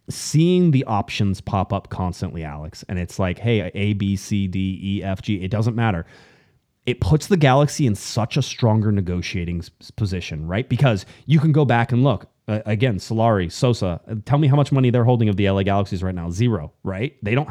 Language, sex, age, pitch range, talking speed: English, male, 30-49, 100-130 Hz, 210 wpm